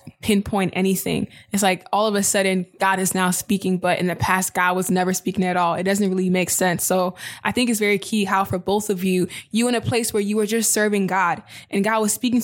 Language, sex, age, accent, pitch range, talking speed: English, female, 10-29, American, 190-220 Hz, 250 wpm